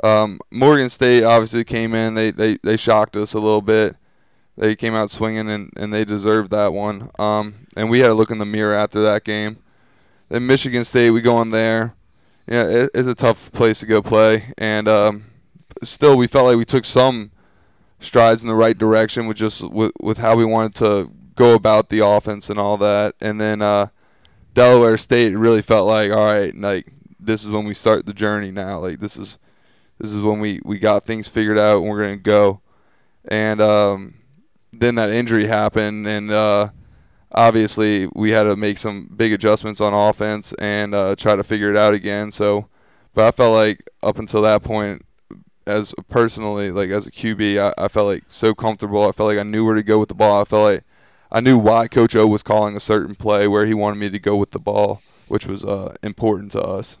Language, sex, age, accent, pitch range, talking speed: English, male, 20-39, American, 105-110 Hz, 215 wpm